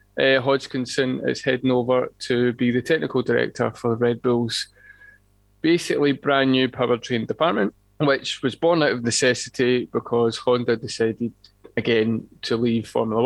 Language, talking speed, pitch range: English, 140 wpm, 115-135 Hz